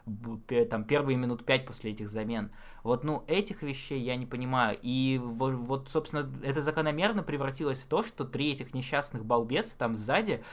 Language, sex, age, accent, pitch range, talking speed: Russian, male, 20-39, native, 115-145 Hz, 165 wpm